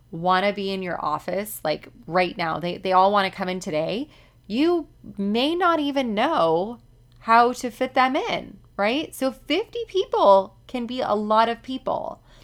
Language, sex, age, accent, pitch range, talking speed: English, female, 20-39, American, 155-215 Hz, 180 wpm